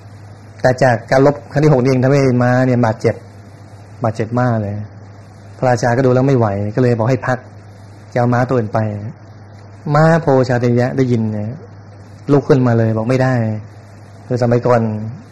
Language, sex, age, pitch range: Thai, male, 20-39, 105-130 Hz